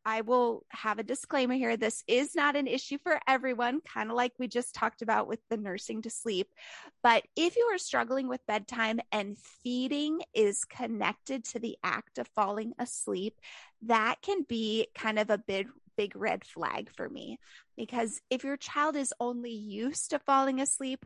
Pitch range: 215-275 Hz